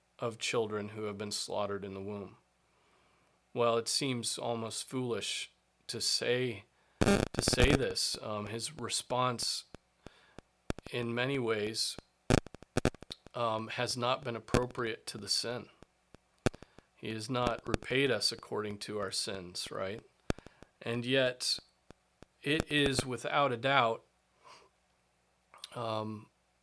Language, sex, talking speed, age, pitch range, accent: English, male, 115 wpm, 40-59, 105-130 Hz, American